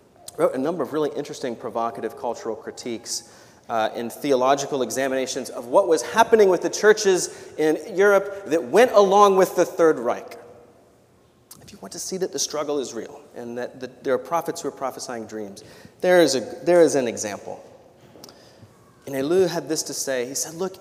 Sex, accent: male, American